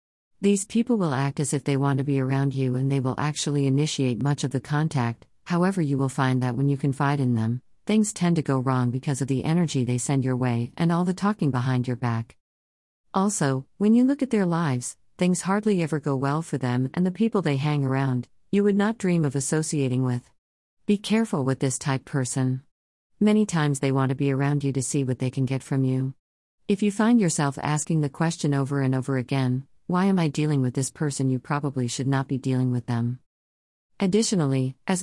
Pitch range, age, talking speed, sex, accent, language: 130-170 Hz, 50-69, 220 wpm, female, American, English